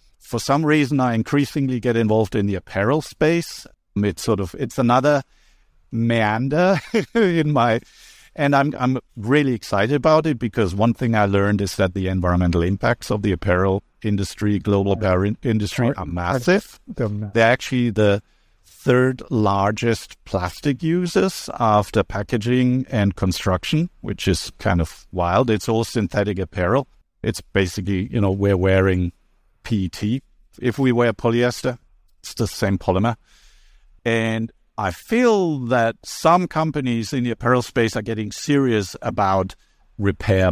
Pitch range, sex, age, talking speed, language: 100-125 Hz, male, 50-69, 140 wpm, English